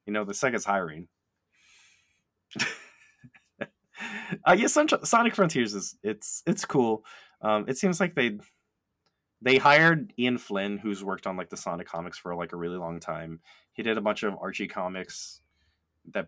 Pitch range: 85-110 Hz